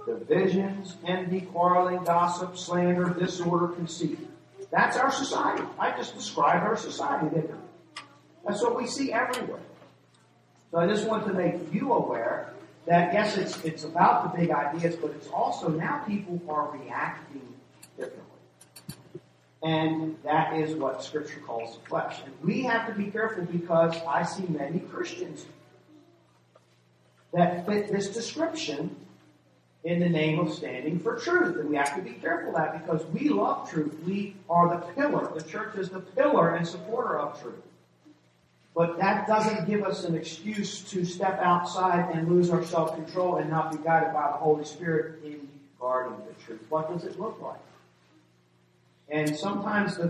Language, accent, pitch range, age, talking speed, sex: English, American, 155-190 Hz, 40-59, 165 wpm, male